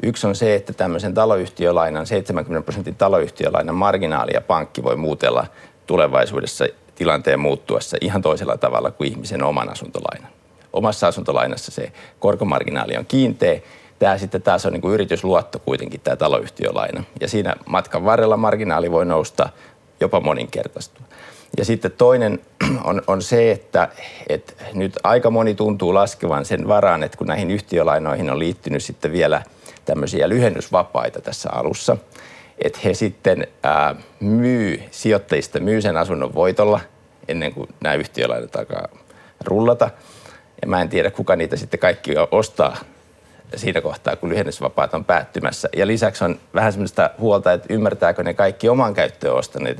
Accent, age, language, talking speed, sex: native, 50-69, Finnish, 140 wpm, male